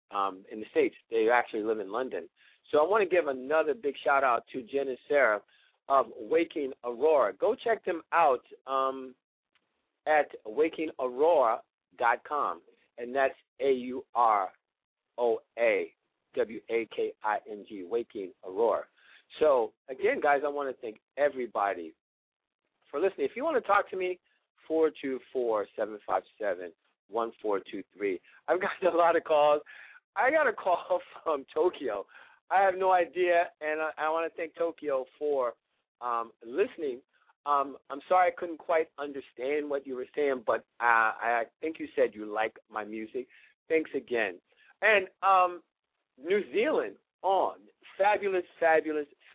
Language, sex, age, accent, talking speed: English, male, 50-69, American, 155 wpm